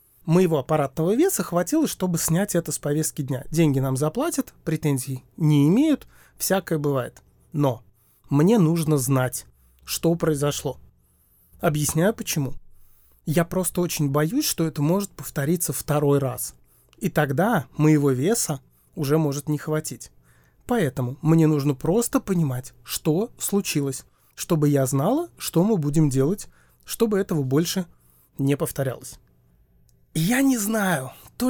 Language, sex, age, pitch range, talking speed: Russian, male, 30-49, 140-190 Hz, 130 wpm